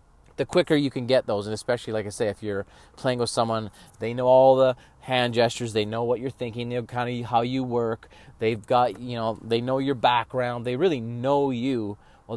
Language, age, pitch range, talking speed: English, 30-49, 105-125 Hz, 230 wpm